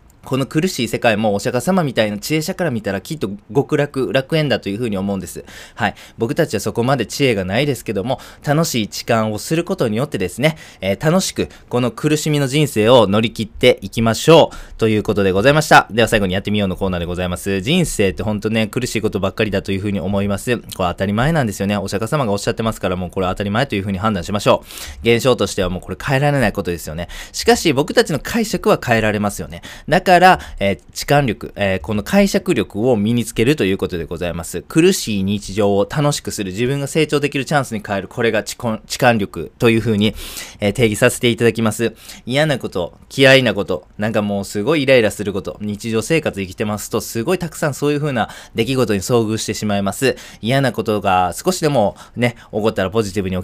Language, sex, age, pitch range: Japanese, male, 20-39, 100-140 Hz